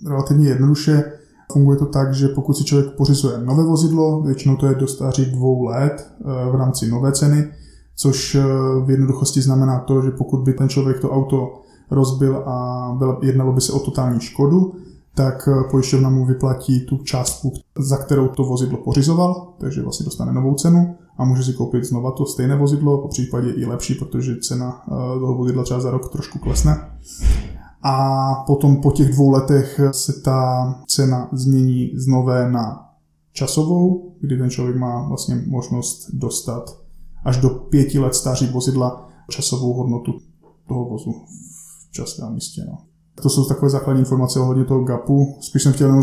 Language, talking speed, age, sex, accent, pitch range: Czech, 165 wpm, 20-39, male, native, 130-140 Hz